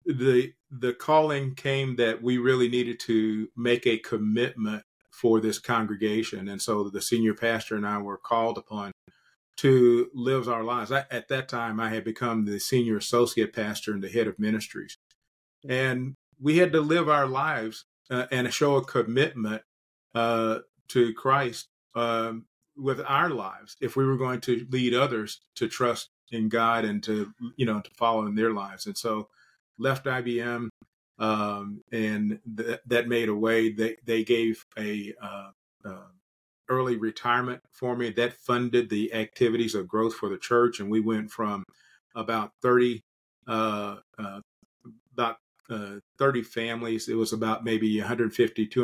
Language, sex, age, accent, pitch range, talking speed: English, male, 40-59, American, 110-125 Hz, 165 wpm